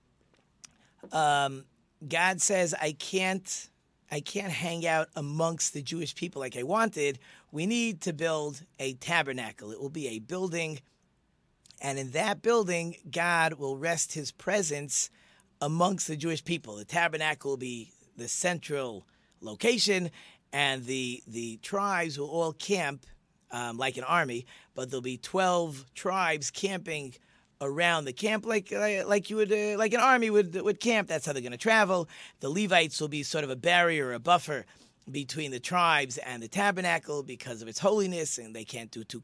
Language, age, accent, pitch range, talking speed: English, 40-59, American, 140-185 Hz, 170 wpm